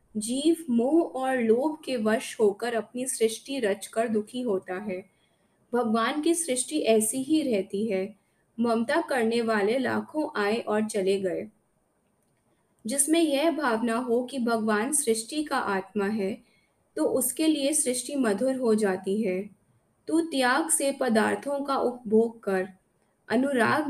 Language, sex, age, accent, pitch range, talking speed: Hindi, female, 20-39, native, 210-265 Hz, 135 wpm